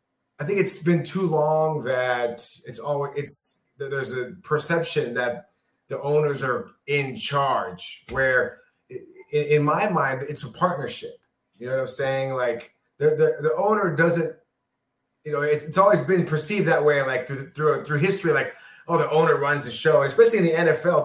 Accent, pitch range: American, 140-180 Hz